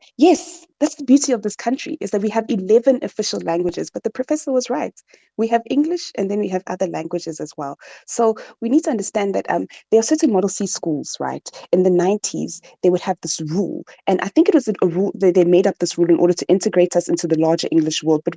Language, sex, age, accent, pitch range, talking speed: English, female, 20-39, South African, 170-245 Hz, 250 wpm